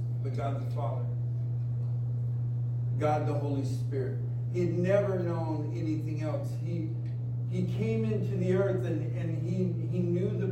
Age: 50-69